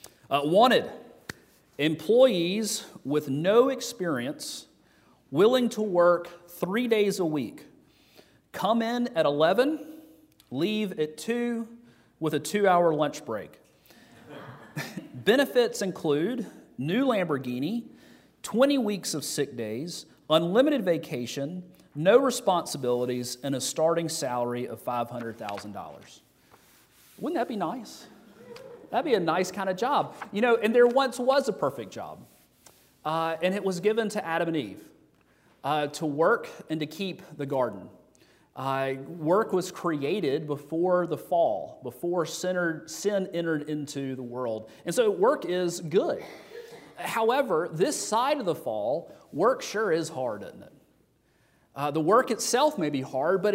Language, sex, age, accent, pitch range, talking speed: English, male, 40-59, American, 145-215 Hz, 135 wpm